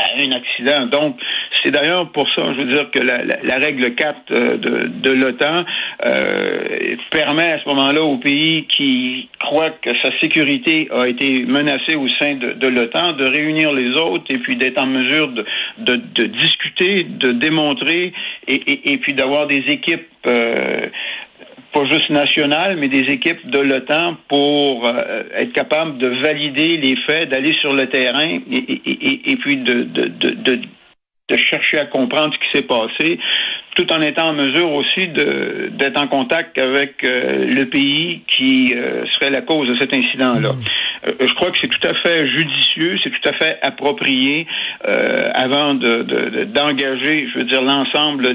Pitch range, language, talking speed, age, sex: 130-165 Hz, French, 180 wpm, 60-79, male